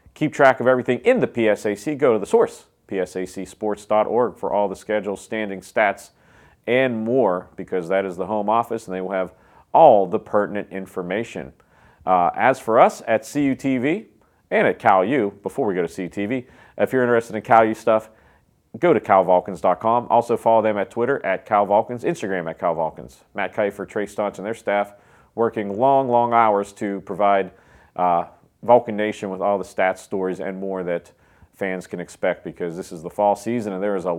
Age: 40-59